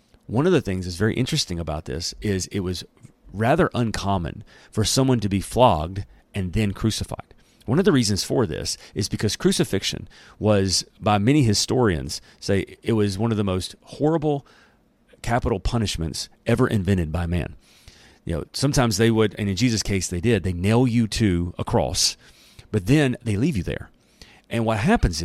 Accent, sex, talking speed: American, male, 180 wpm